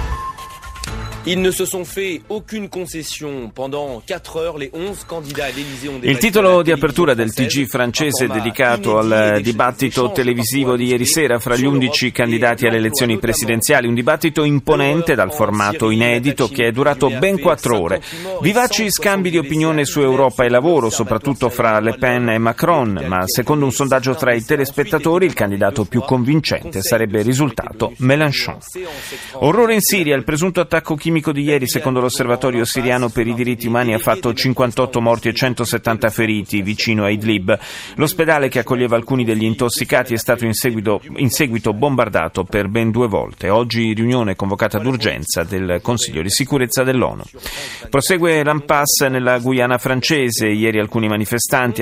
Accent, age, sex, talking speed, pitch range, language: native, 30-49, male, 140 wpm, 115-145 Hz, Italian